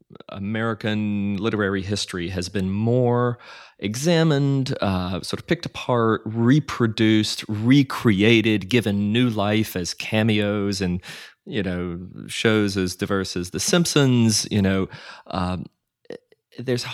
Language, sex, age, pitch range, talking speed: English, male, 30-49, 95-125 Hz, 115 wpm